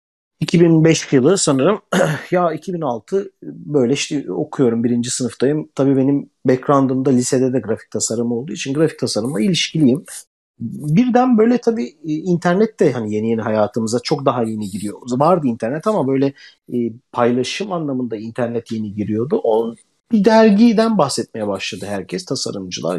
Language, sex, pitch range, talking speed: Turkish, male, 120-175 Hz, 135 wpm